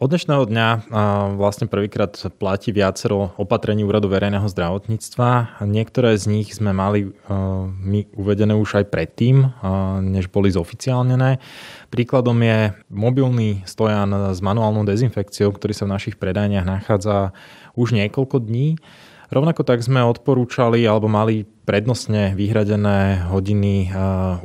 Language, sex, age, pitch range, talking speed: Slovak, male, 20-39, 95-110 Hz, 125 wpm